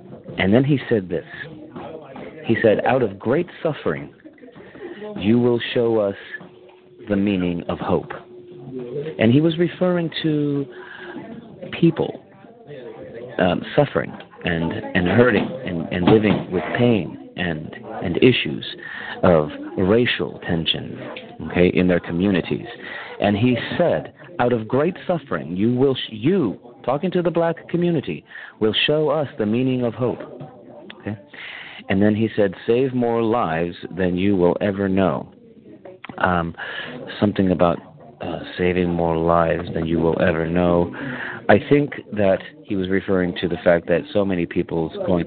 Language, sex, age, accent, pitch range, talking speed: English, male, 40-59, American, 85-125 Hz, 140 wpm